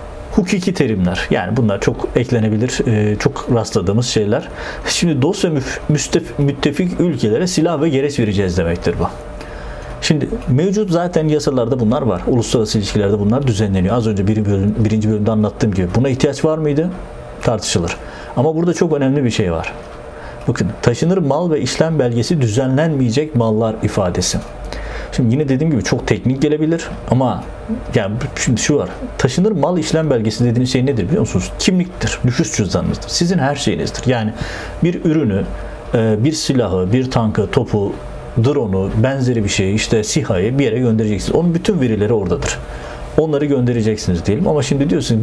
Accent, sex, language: native, male, Turkish